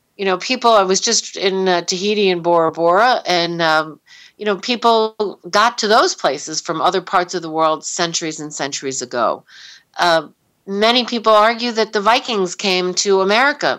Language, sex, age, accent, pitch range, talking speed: English, female, 50-69, American, 165-220 Hz, 180 wpm